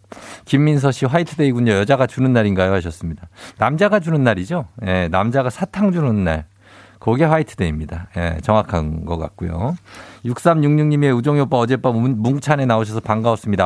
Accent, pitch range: native, 100-150 Hz